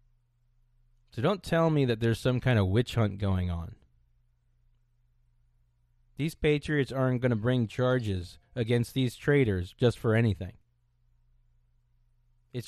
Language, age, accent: English, 30-49, American